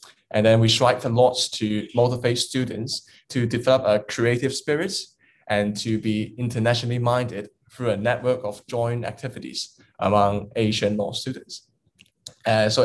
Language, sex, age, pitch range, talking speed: English, male, 10-29, 105-125 Hz, 145 wpm